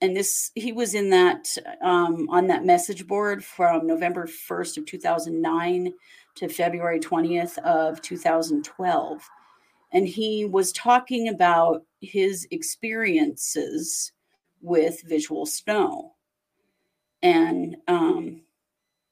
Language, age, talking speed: English, 40-59, 105 wpm